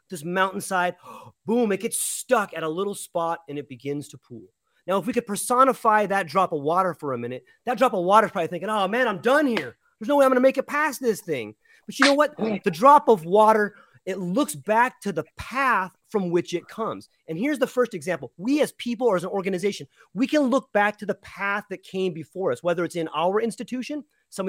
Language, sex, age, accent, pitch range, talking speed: English, male, 30-49, American, 185-235 Hz, 240 wpm